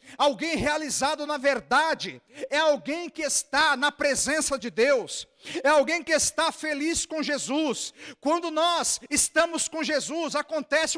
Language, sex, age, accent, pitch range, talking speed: Portuguese, male, 50-69, Brazilian, 210-295 Hz, 135 wpm